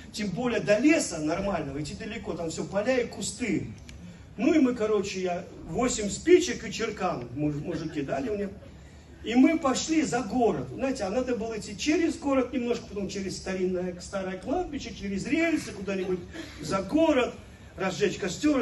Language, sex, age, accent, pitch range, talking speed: Russian, male, 40-59, native, 150-225 Hz, 160 wpm